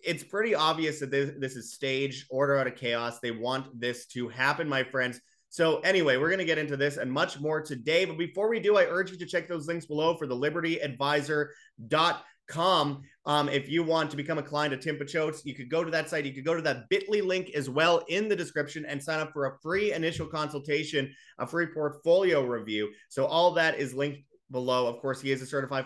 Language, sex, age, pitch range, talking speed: English, male, 30-49, 135-170 Hz, 225 wpm